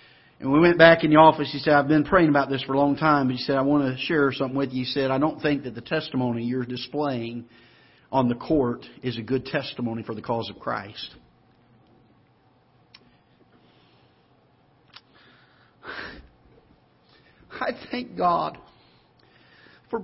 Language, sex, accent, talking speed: English, male, American, 160 wpm